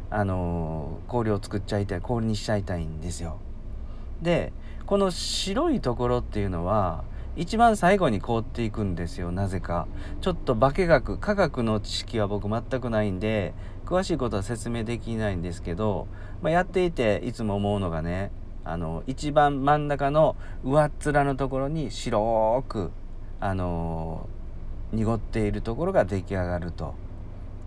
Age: 40-59